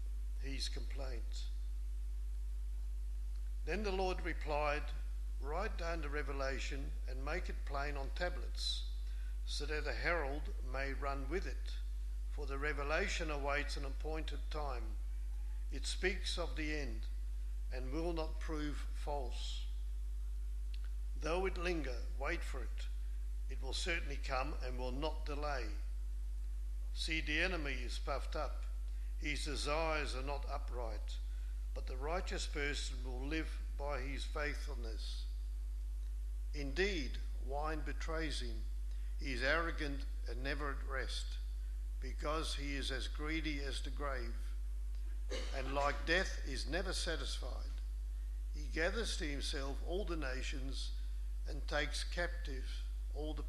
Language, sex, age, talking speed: English, male, 50-69, 125 wpm